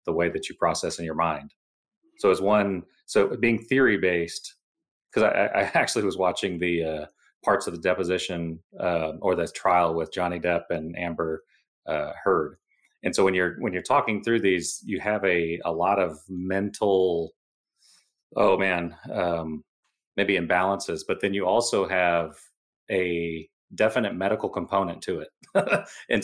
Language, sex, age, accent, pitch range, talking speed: English, male, 30-49, American, 85-105 Hz, 160 wpm